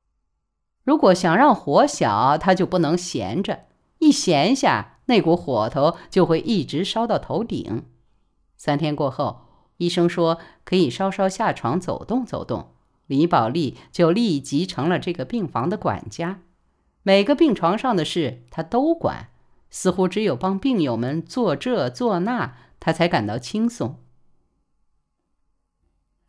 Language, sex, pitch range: Chinese, female, 130-210 Hz